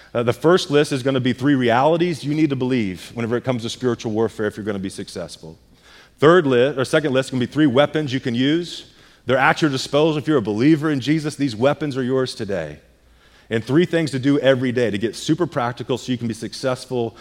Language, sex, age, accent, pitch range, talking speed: English, male, 30-49, American, 110-150 Hz, 250 wpm